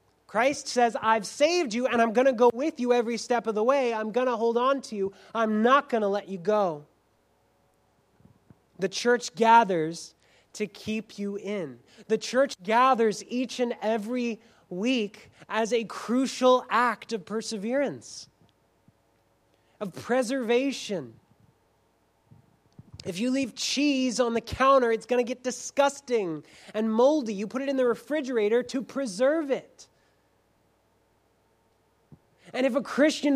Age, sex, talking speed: 20-39, male, 145 wpm